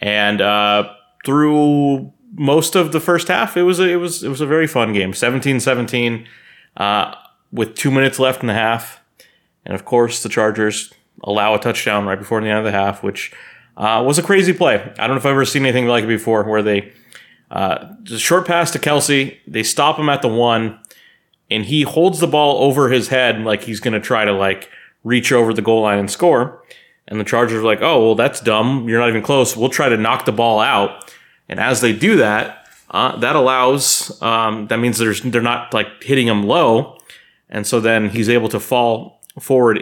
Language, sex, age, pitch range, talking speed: English, male, 30-49, 105-135 Hz, 215 wpm